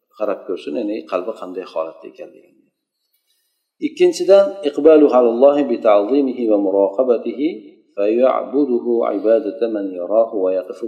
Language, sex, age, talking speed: Russian, male, 50-69, 120 wpm